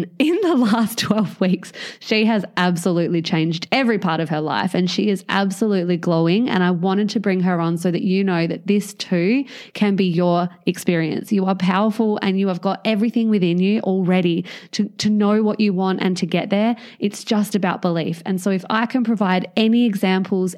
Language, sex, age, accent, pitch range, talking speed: English, female, 20-39, Australian, 180-210 Hz, 205 wpm